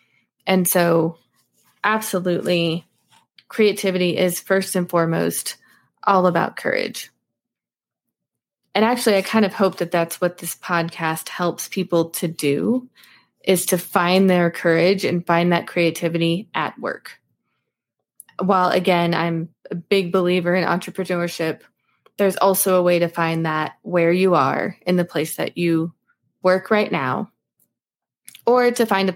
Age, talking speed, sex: 20-39, 140 wpm, female